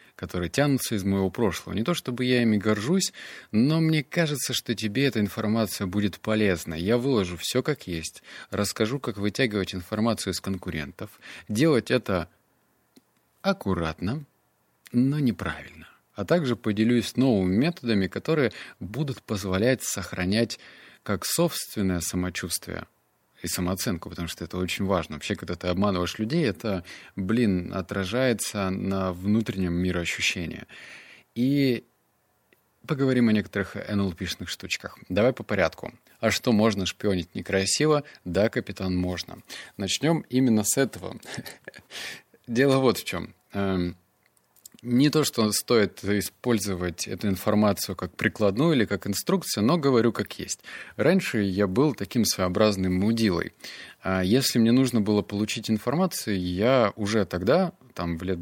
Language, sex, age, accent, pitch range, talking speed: Russian, male, 30-49, native, 95-125 Hz, 130 wpm